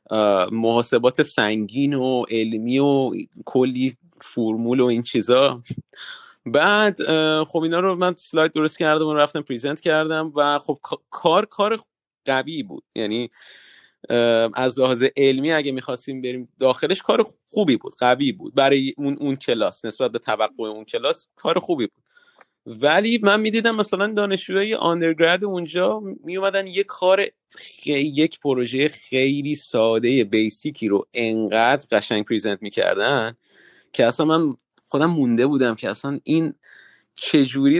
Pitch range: 125-165 Hz